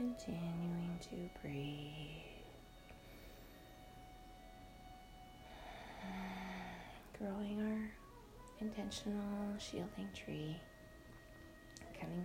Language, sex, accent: English, female, American